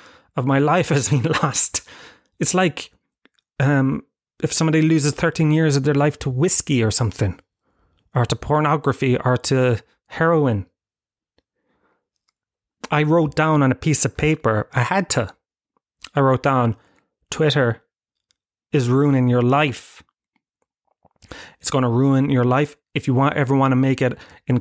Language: English